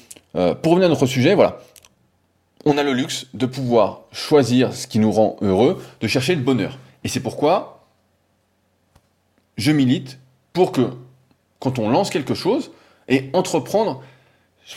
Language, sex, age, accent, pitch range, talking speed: French, male, 20-39, French, 110-135 Hz, 155 wpm